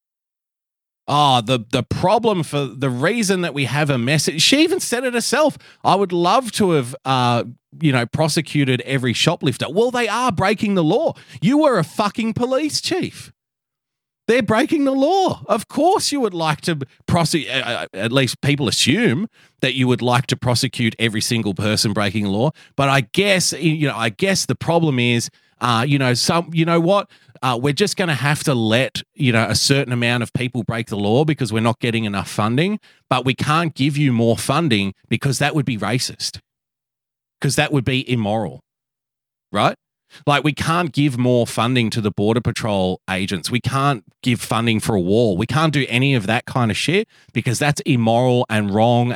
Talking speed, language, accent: 195 wpm, English, Australian